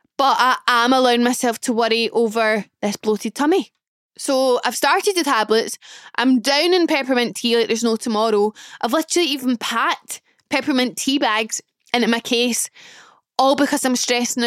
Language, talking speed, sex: English, 160 wpm, female